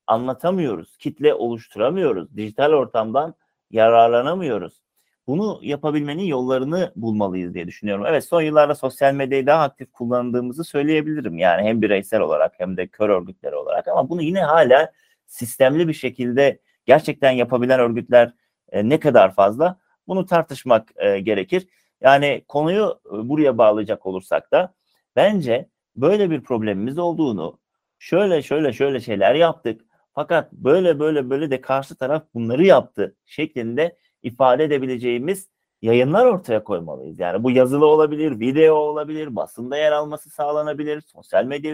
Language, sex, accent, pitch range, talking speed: Turkish, male, native, 125-170 Hz, 130 wpm